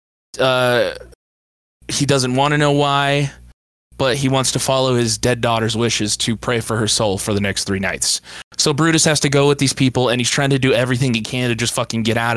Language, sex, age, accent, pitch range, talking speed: English, male, 20-39, American, 110-145 Hz, 230 wpm